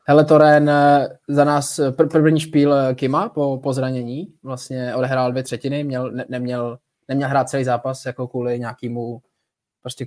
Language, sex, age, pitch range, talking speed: Czech, male, 20-39, 125-145 Hz, 150 wpm